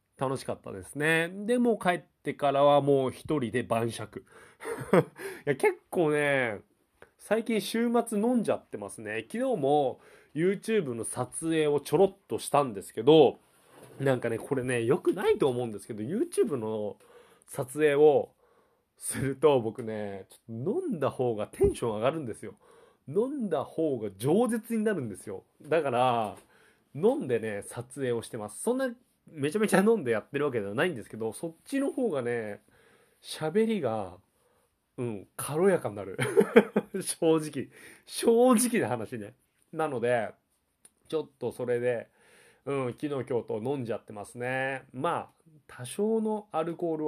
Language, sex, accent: Japanese, male, native